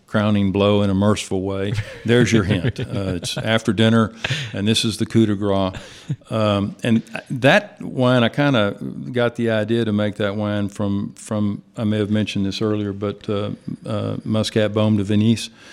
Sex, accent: male, American